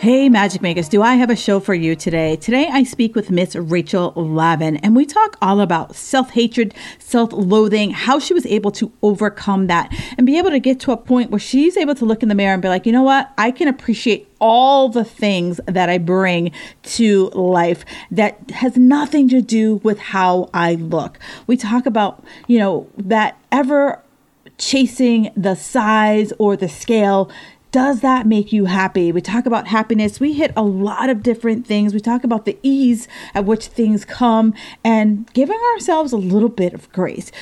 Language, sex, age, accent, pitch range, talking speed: English, female, 40-59, American, 195-245 Hz, 190 wpm